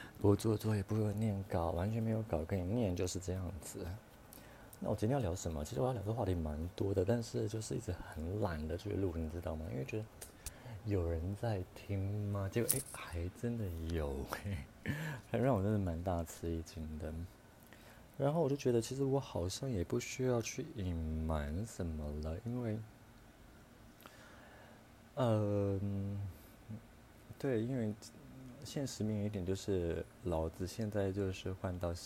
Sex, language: male, Chinese